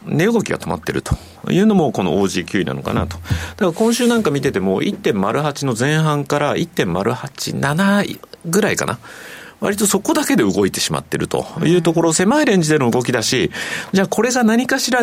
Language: Japanese